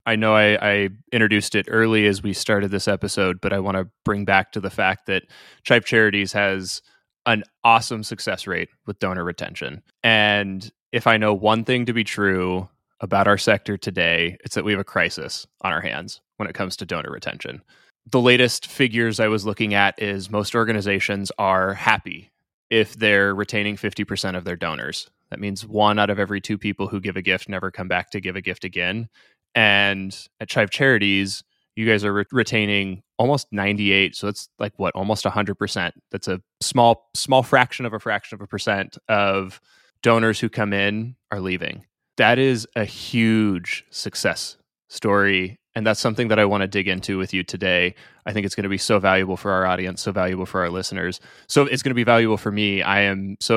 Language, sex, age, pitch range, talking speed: English, male, 20-39, 95-110 Hz, 200 wpm